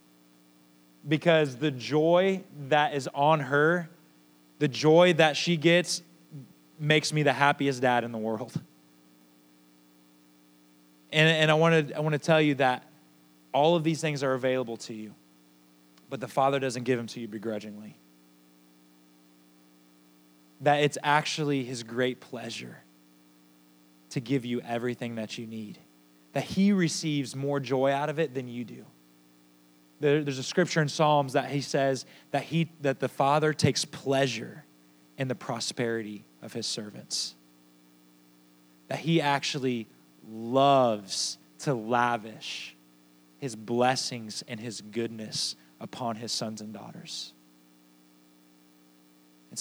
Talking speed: 130 wpm